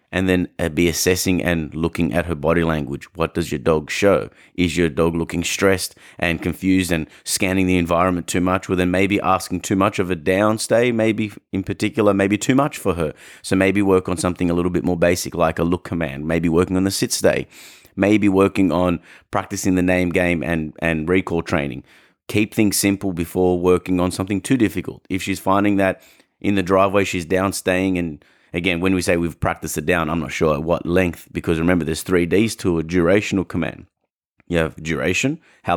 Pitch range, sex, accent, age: 85-95 Hz, male, Australian, 30-49